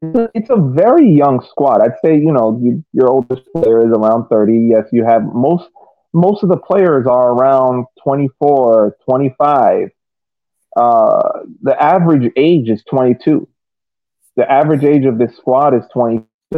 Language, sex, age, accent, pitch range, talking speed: English, male, 30-49, American, 110-140 Hz, 165 wpm